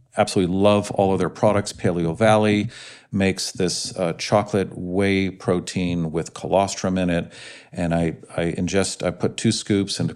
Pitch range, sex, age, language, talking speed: 90-115 Hz, male, 50-69, English, 160 wpm